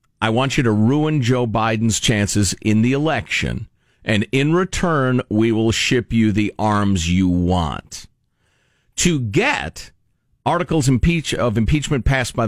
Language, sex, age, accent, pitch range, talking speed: English, male, 50-69, American, 105-160 Hz, 140 wpm